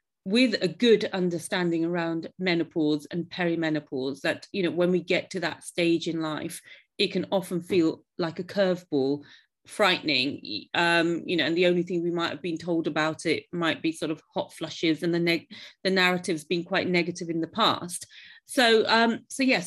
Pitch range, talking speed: 165-200 Hz, 190 wpm